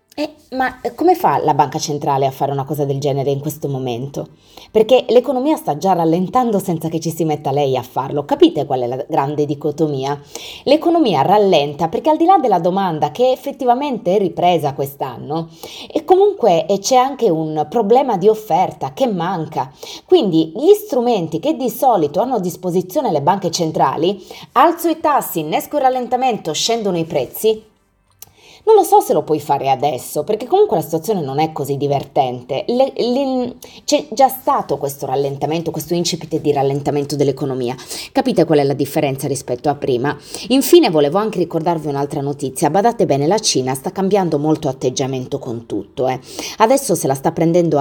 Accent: native